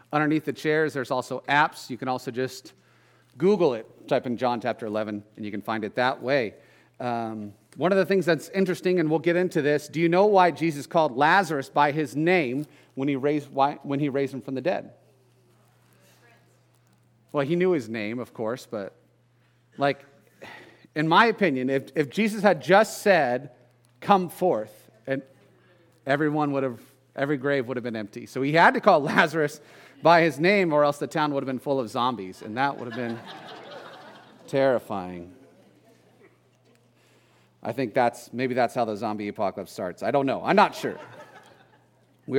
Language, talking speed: English, 185 wpm